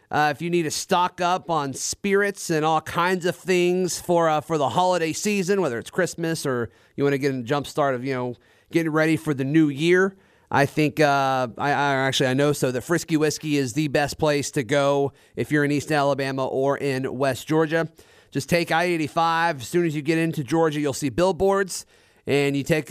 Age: 30-49